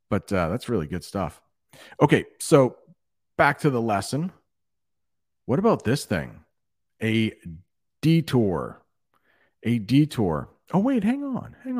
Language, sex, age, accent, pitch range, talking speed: English, male, 40-59, American, 95-140 Hz, 125 wpm